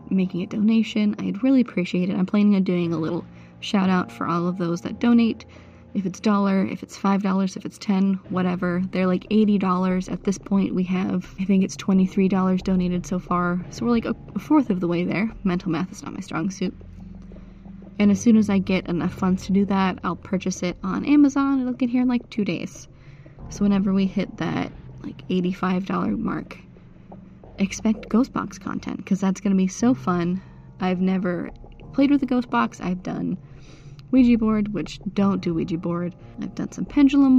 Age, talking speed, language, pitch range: 20-39, 200 wpm, English, 175-210 Hz